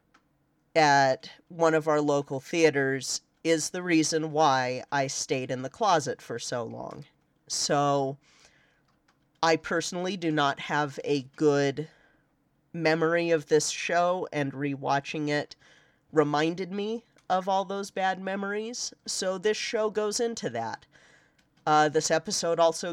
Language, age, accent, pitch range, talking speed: English, 40-59, American, 145-170 Hz, 130 wpm